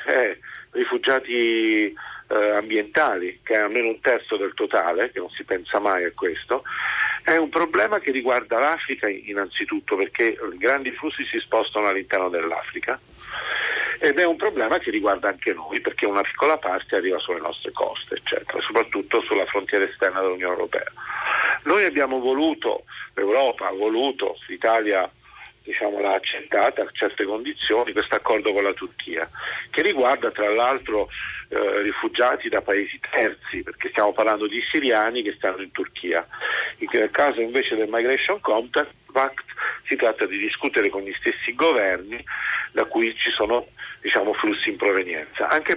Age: 50-69